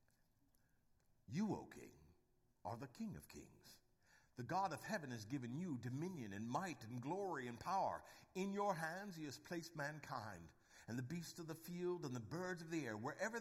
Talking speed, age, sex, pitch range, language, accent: 190 wpm, 60-79, male, 110-155 Hz, English, American